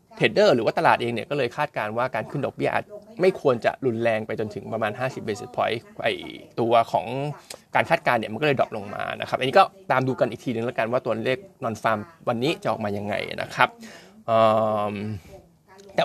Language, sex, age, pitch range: Thai, male, 20-39, 120-150 Hz